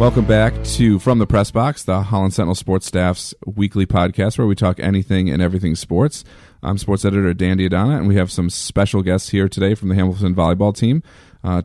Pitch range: 90-105 Hz